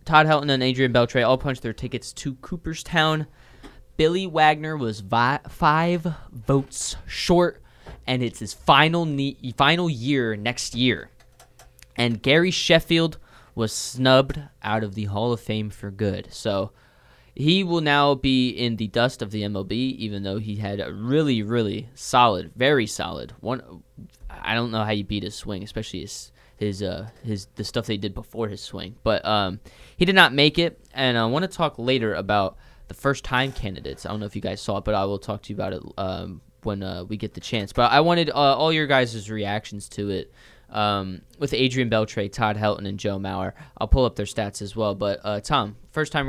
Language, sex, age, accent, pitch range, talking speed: English, male, 20-39, American, 105-135 Hz, 195 wpm